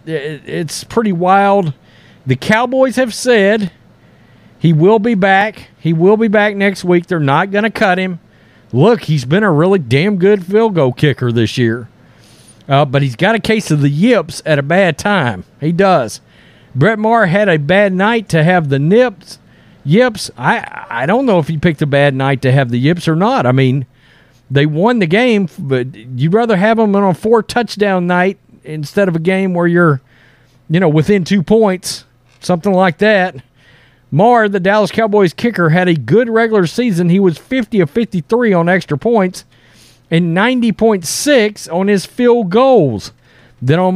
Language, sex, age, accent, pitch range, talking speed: English, male, 50-69, American, 150-215 Hz, 180 wpm